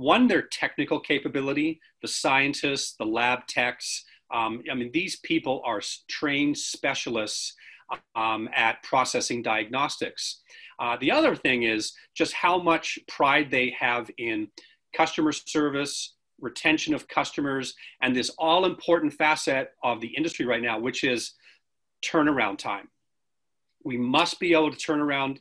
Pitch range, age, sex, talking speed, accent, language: 125-175 Hz, 40-59, male, 135 wpm, American, English